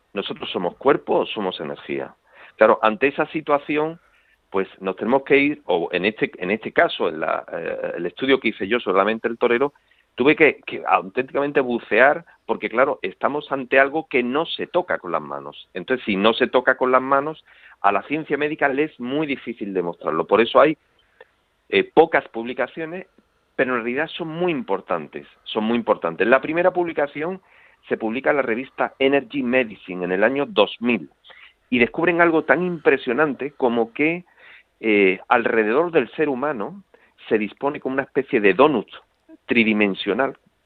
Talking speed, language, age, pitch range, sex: 170 wpm, Spanish, 40-59, 115-150 Hz, male